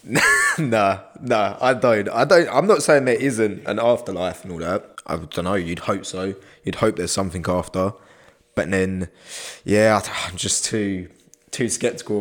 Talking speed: 175 wpm